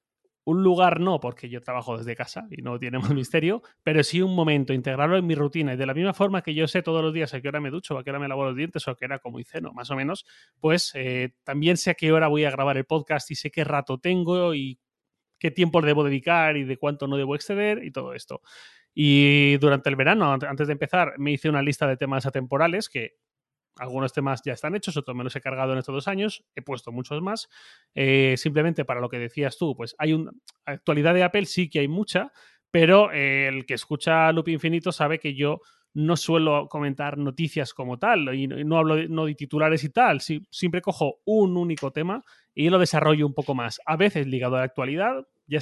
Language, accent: Spanish, Spanish